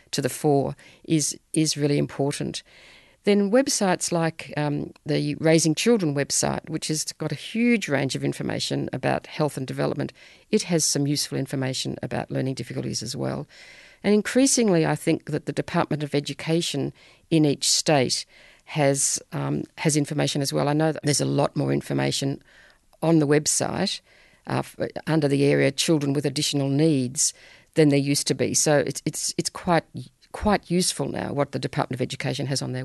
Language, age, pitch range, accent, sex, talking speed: English, 50-69, 145-165 Hz, Australian, female, 175 wpm